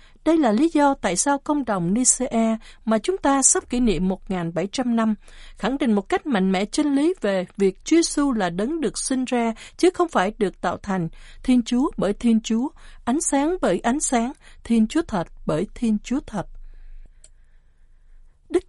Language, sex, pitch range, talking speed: Vietnamese, female, 200-285 Hz, 185 wpm